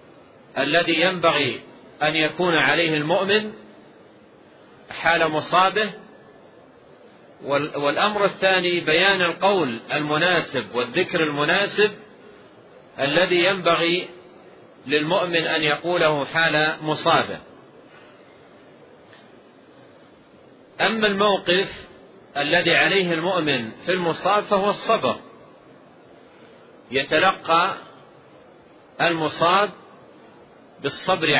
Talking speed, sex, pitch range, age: 65 wpm, male, 160-195 Hz, 40-59